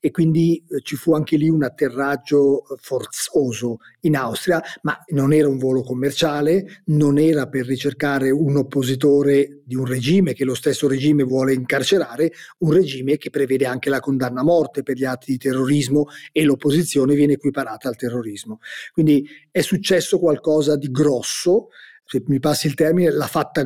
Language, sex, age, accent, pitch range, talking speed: Italian, male, 40-59, native, 135-160 Hz, 165 wpm